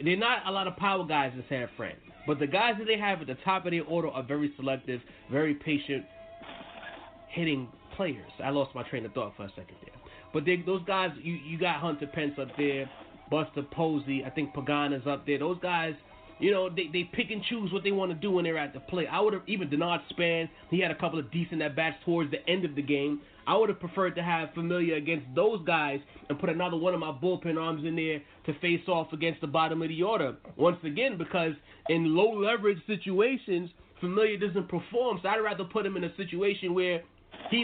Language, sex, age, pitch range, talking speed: English, male, 30-49, 155-210 Hz, 230 wpm